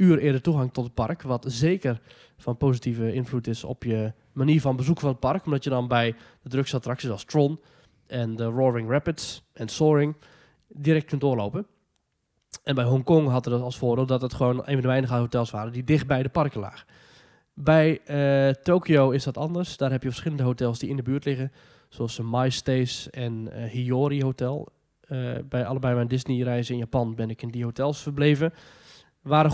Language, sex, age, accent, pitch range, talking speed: Dutch, male, 20-39, Dutch, 125-150 Hz, 200 wpm